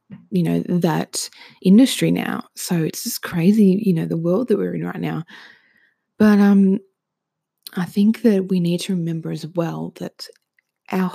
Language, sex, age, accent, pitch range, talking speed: English, female, 20-39, Australian, 170-200 Hz, 165 wpm